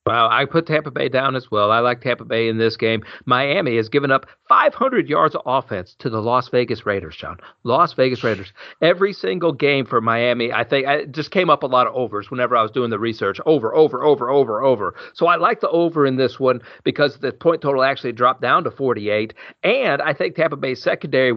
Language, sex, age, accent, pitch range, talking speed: English, male, 40-59, American, 125-155 Hz, 225 wpm